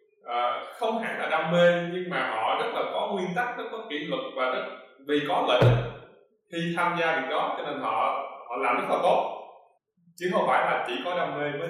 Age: 20-39